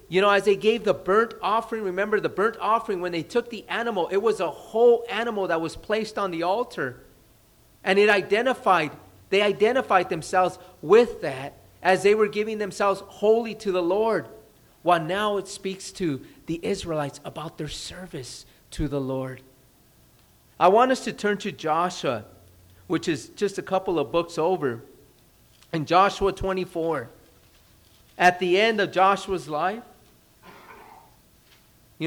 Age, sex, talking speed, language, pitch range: 40-59, male, 155 wpm, English, 155-195 Hz